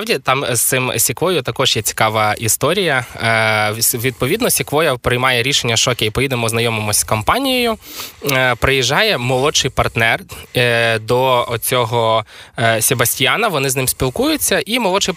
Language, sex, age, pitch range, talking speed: Ukrainian, male, 20-39, 110-125 Hz, 120 wpm